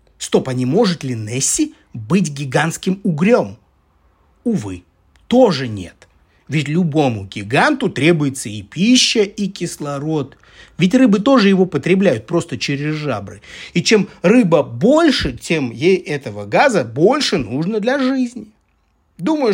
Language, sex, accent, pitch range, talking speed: Russian, male, native, 125-195 Hz, 125 wpm